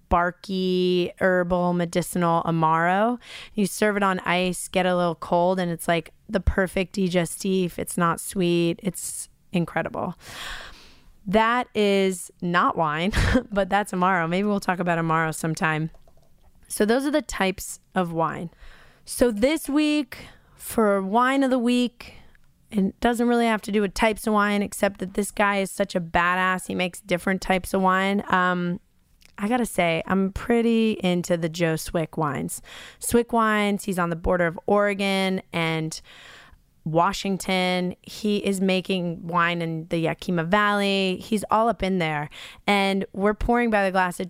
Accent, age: American, 20-39